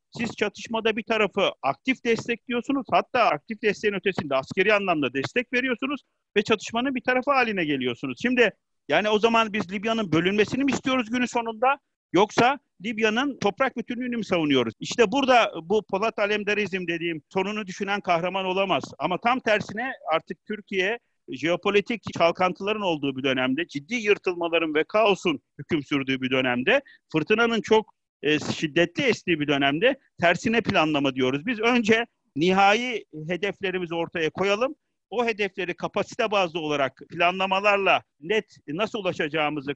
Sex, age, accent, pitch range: male, 50-69, native, 165-230 Hz